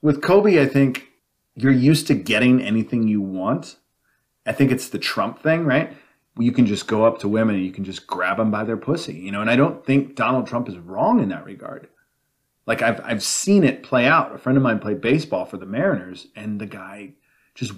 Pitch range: 100-130 Hz